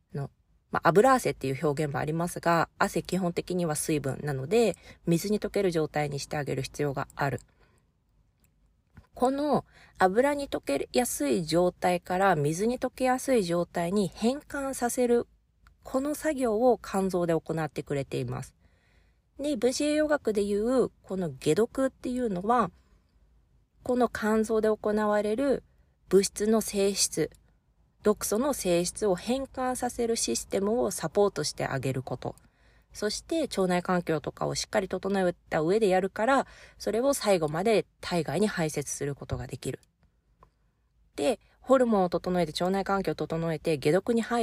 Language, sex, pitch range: Japanese, female, 160-230 Hz